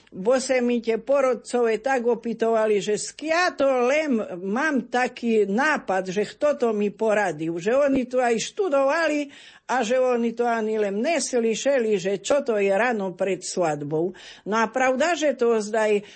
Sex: female